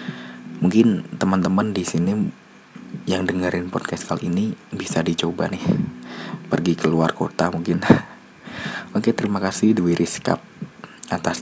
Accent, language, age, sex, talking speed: native, Indonesian, 20-39, male, 115 wpm